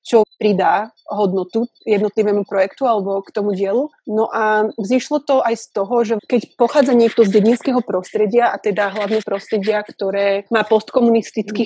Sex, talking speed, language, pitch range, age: female, 155 wpm, Slovak, 205-235 Hz, 30-49